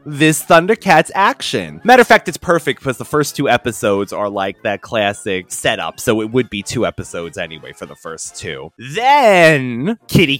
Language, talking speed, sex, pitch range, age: English, 180 wpm, male, 115-165 Hz, 20-39